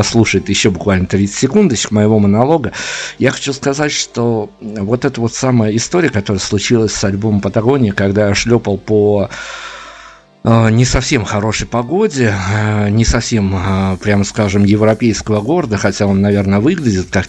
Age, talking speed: 50-69, 140 wpm